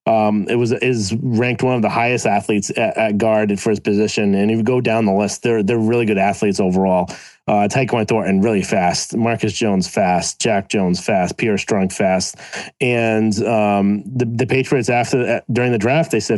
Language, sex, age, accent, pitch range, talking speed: English, male, 30-49, American, 110-135 Hz, 200 wpm